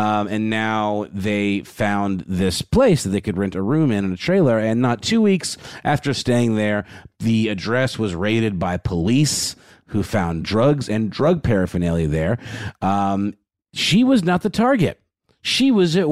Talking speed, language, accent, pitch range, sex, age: 170 wpm, English, American, 95-125 Hz, male, 40-59